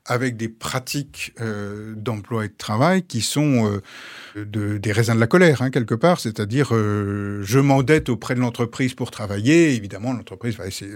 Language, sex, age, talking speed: French, male, 50-69, 180 wpm